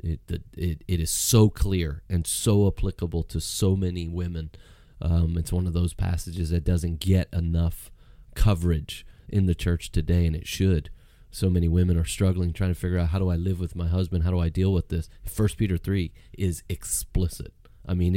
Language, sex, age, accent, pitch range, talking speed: English, male, 30-49, American, 85-95 Hz, 200 wpm